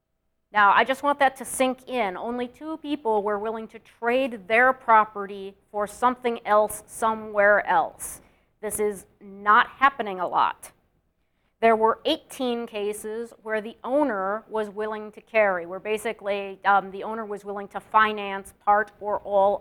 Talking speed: 155 wpm